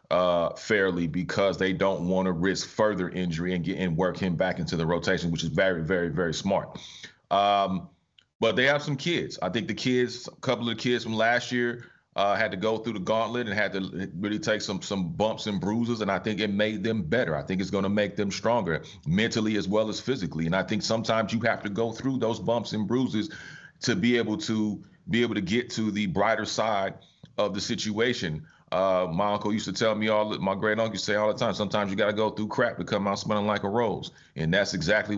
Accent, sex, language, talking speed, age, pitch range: American, male, English, 235 wpm, 30-49, 100-120 Hz